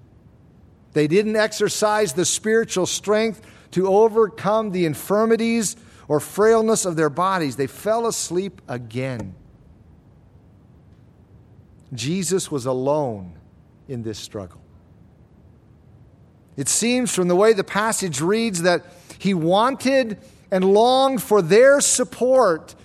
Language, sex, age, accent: English, male, 50-69, American